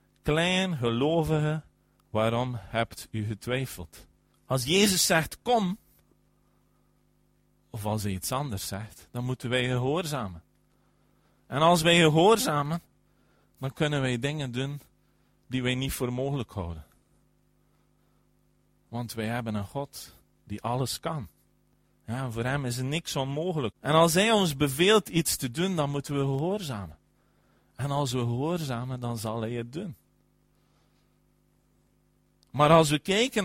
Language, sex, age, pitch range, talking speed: Dutch, male, 40-59, 110-170 Hz, 130 wpm